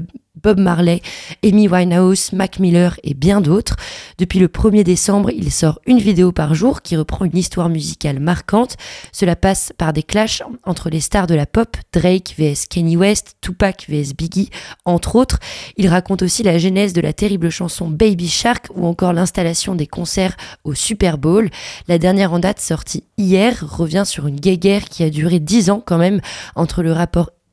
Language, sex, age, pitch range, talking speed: French, female, 20-39, 165-195 Hz, 185 wpm